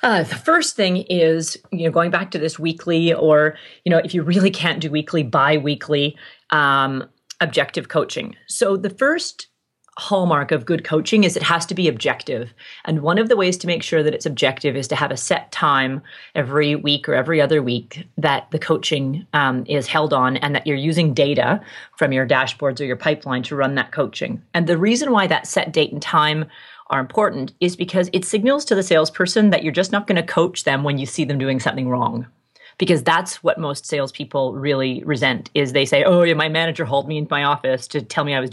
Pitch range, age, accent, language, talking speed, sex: 140-175 Hz, 30-49, American, English, 220 wpm, female